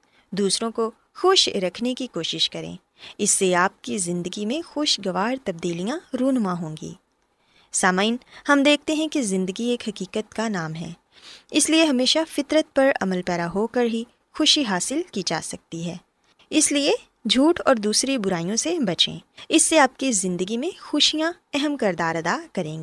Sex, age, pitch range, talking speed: female, 20-39, 190-290 Hz, 170 wpm